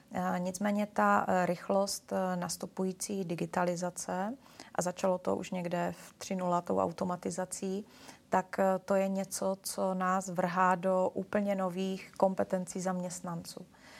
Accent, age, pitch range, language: native, 30-49, 180-200 Hz, Czech